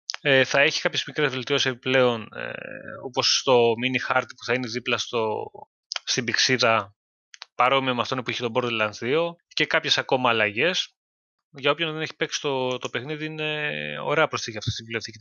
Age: 20-39